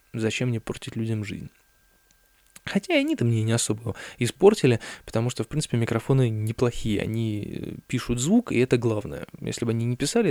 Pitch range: 105-125 Hz